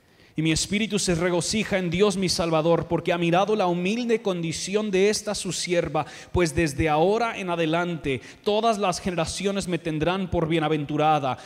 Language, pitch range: Spanish, 140-180 Hz